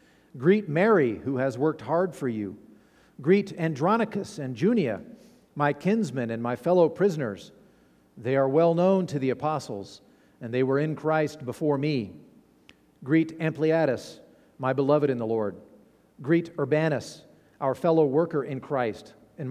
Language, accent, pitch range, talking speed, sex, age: English, American, 125-170 Hz, 145 wpm, male, 50-69